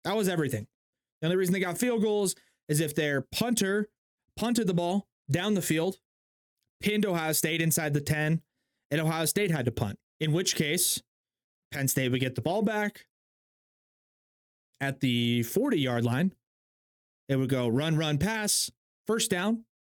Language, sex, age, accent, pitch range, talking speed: English, male, 30-49, American, 135-185 Hz, 165 wpm